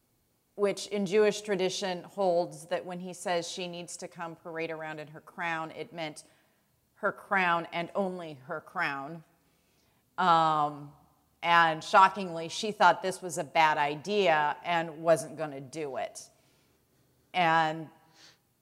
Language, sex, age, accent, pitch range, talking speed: English, female, 30-49, American, 160-195 Hz, 140 wpm